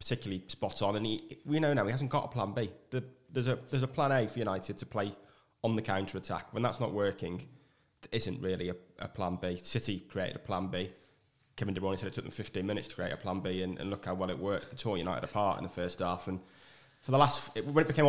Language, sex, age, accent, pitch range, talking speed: English, male, 20-39, British, 95-130 Hz, 270 wpm